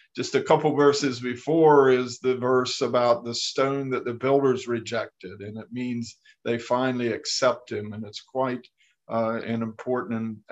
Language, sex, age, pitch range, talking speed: English, male, 50-69, 120-135 Hz, 165 wpm